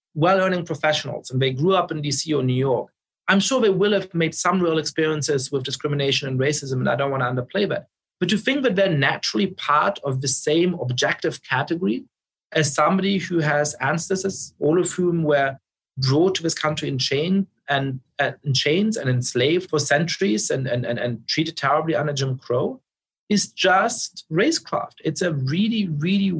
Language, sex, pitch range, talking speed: English, male, 140-180 Hz, 185 wpm